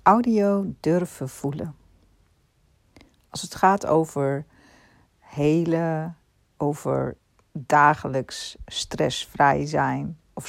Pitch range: 125-185 Hz